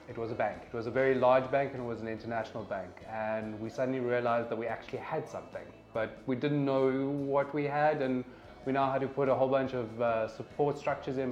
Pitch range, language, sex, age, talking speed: 110-130 Hz, English, male, 20-39, 245 wpm